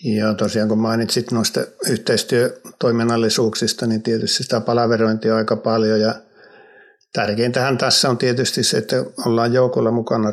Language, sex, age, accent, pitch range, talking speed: Finnish, male, 60-79, native, 105-125 Hz, 135 wpm